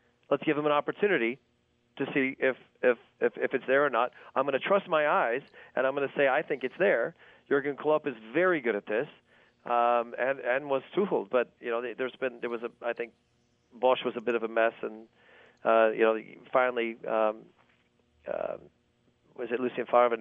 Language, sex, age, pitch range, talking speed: English, male, 40-59, 120-155 Hz, 210 wpm